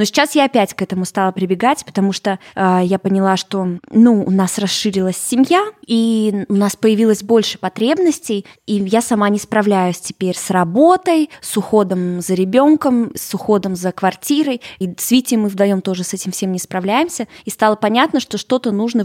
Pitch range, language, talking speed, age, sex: 190-235 Hz, Russian, 185 wpm, 20-39, female